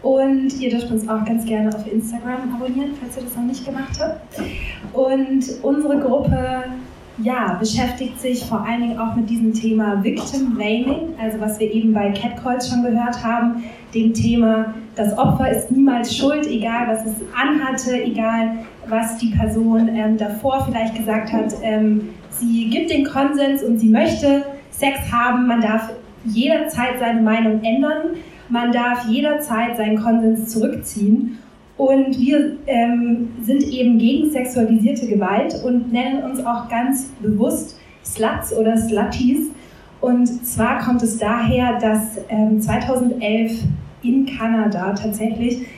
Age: 20-39